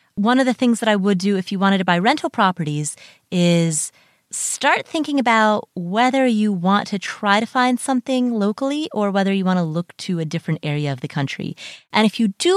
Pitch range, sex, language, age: 170-215 Hz, female, English, 30-49